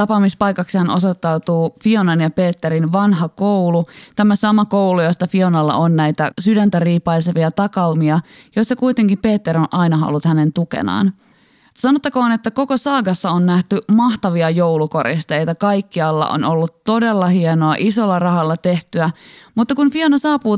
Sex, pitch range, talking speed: female, 170-220 Hz, 130 wpm